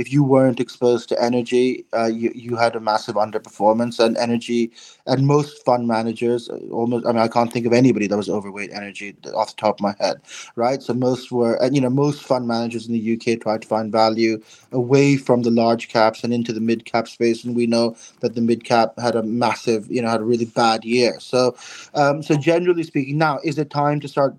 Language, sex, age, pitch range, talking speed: English, male, 20-39, 110-130 Hz, 230 wpm